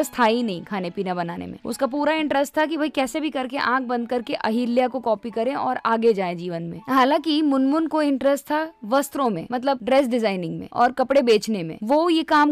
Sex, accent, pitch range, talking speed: female, native, 220-275 Hz, 175 wpm